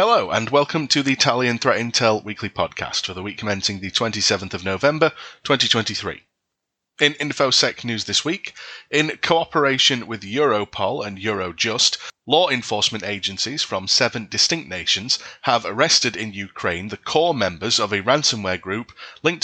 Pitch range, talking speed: 105-130 Hz, 150 wpm